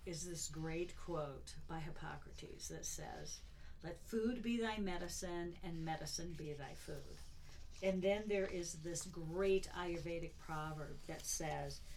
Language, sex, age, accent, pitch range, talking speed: English, female, 50-69, American, 150-190 Hz, 140 wpm